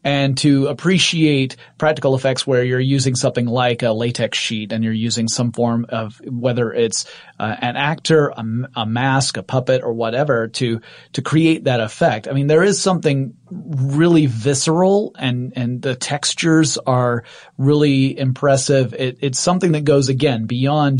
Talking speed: 165 wpm